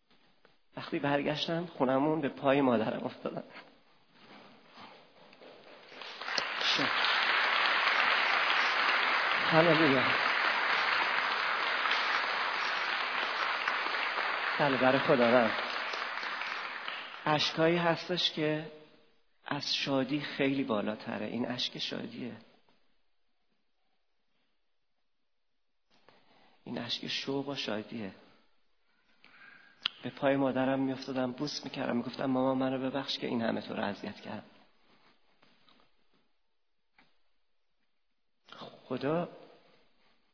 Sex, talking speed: male, 65 wpm